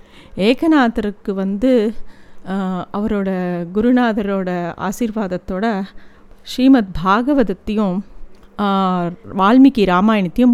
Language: Tamil